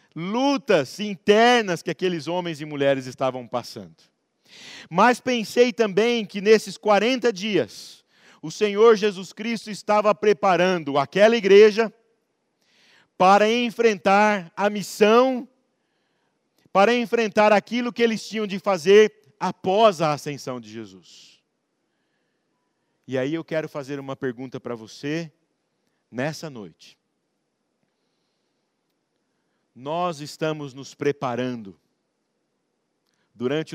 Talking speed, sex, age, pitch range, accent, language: 100 wpm, male, 50-69, 135-205 Hz, Brazilian, Portuguese